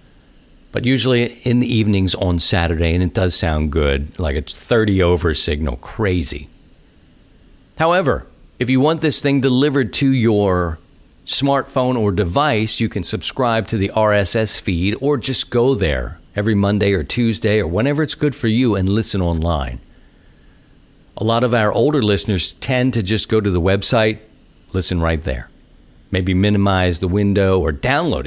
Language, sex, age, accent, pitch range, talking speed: English, male, 50-69, American, 80-110 Hz, 160 wpm